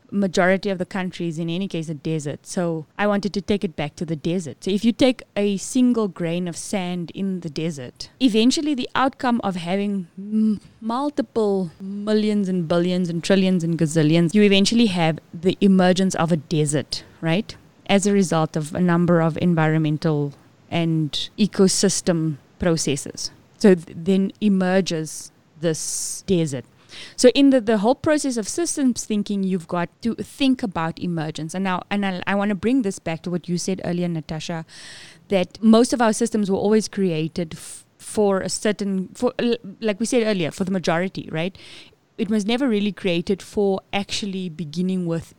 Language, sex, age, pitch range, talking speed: English, female, 20-39, 165-210 Hz, 175 wpm